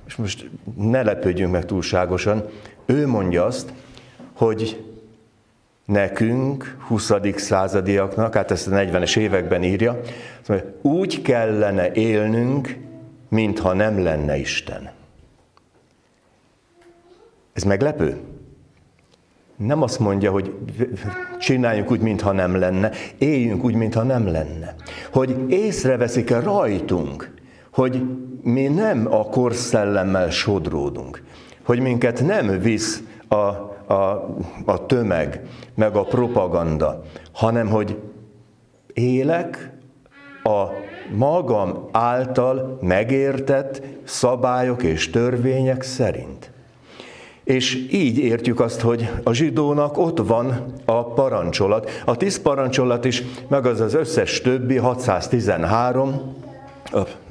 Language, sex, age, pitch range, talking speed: Hungarian, male, 60-79, 105-130 Hz, 100 wpm